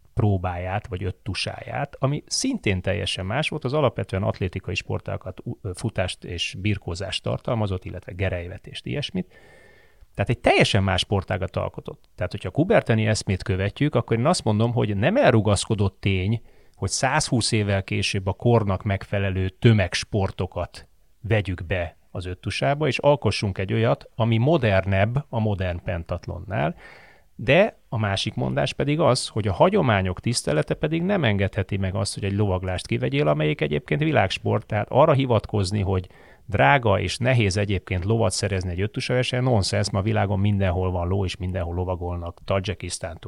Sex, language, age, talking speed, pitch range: male, Hungarian, 30-49, 145 wpm, 95-115 Hz